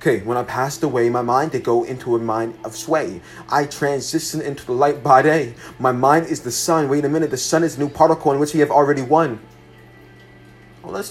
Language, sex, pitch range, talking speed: English, male, 120-150 Hz, 225 wpm